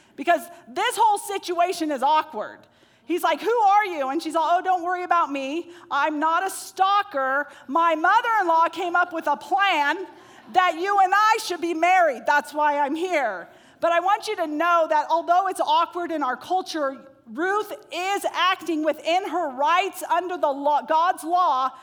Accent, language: American, English